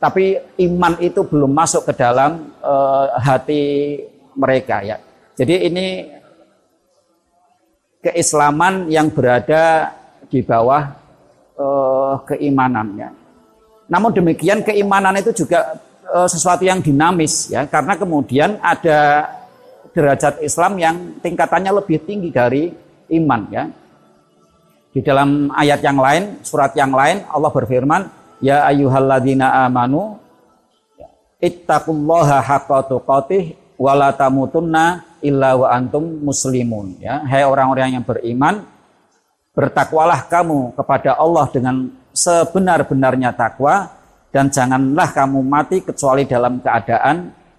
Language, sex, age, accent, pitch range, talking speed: Indonesian, male, 50-69, native, 130-170 Hz, 105 wpm